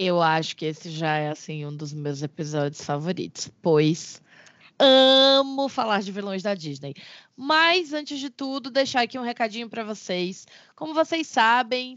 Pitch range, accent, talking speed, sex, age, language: 185-270 Hz, Brazilian, 160 wpm, female, 20-39, Portuguese